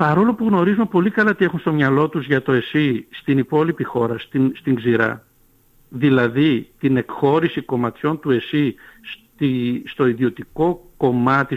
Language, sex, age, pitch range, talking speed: Greek, male, 60-79, 130-170 Hz, 150 wpm